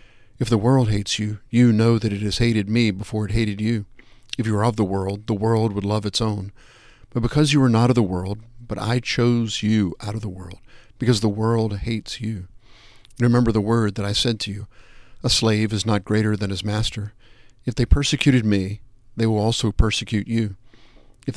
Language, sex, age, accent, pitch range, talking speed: English, male, 50-69, American, 105-120 Hz, 210 wpm